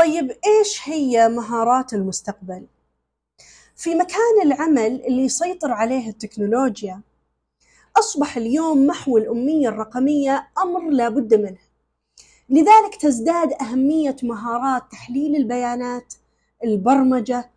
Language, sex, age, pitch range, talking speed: Arabic, female, 30-49, 225-300 Hz, 95 wpm